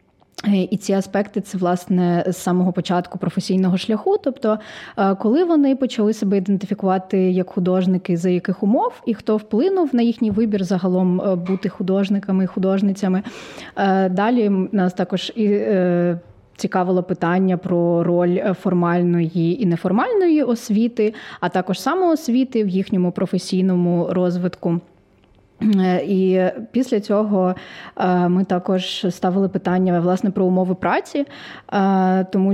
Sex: female